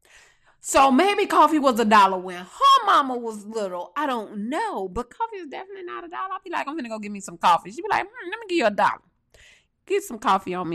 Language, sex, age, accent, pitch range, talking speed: English, female, 20-39, American, 185-285 Hz, 270 wpm